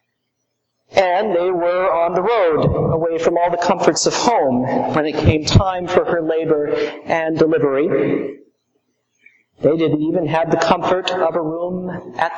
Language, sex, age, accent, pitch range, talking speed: English, male, 50-69, American, 145-185 Hz, 155 wpm